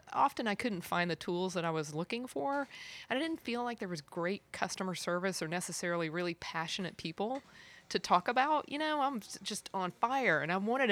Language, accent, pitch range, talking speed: English, American, 160-195 Hz, 210 wpm